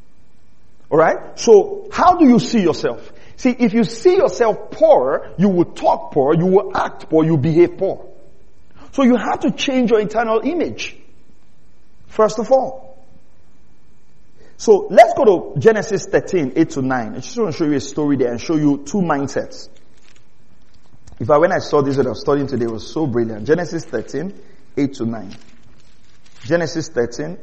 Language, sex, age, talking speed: English, male, 50-69, 175 wpm